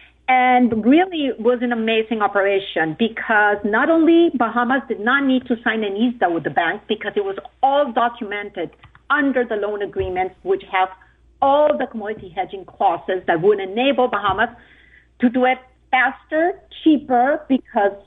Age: 50-69